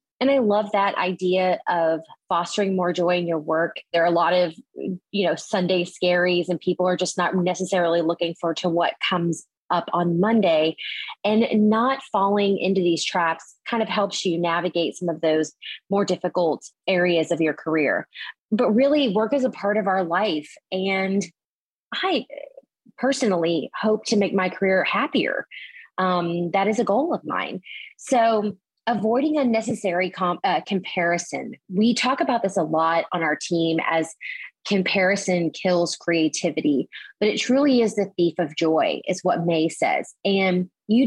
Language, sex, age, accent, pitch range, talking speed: English, female, 20-39, American, 175-225 Hz, 165 wpm